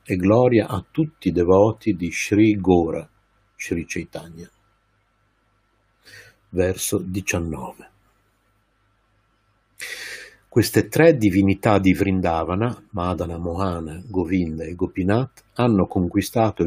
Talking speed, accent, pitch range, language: 90 wpm, native, 90-110 Hz, Italian